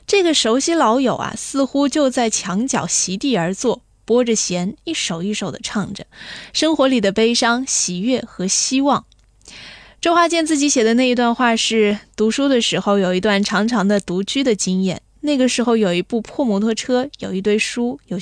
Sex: female